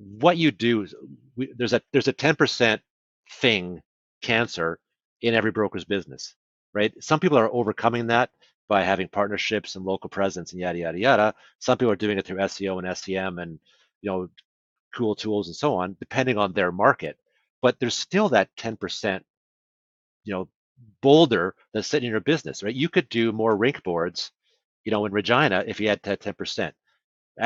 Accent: American